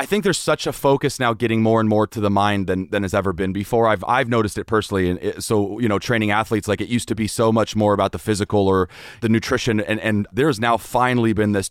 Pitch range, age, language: 100-115 Hz, 30-49, English